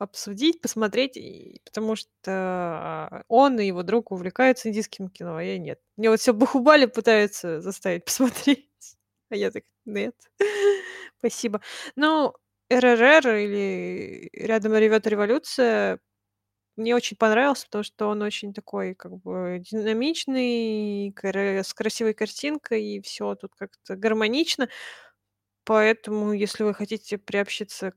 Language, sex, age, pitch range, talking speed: Russian, female, 20-39, 195-255 Hz, 120 wpm